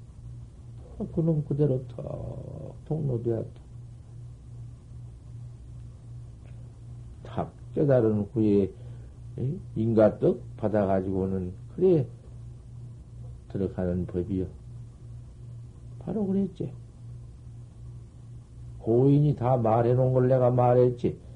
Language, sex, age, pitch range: Korean, male, 60-79, 115-135 Hz